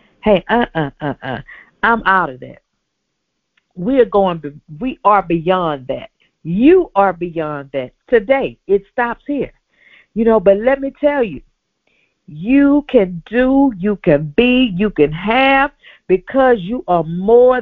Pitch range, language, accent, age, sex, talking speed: 165-235 Hz, English, American, 50-69, female, 145 wpm